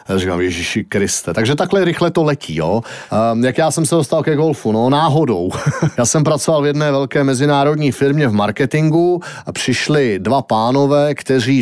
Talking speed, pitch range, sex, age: 180 wpm, 120-145 Hz, male, 40-59